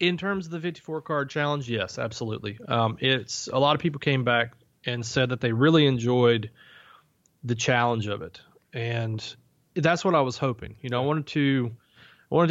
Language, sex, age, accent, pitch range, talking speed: English, male, 30-49, American, 115-145 Hz, 185 wpm